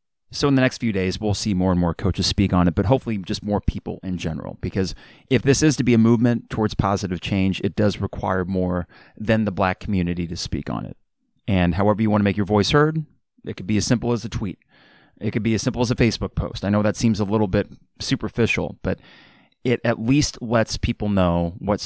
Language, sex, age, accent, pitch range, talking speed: English, male, 30-49, American, 95-115 Hz, 240 wpm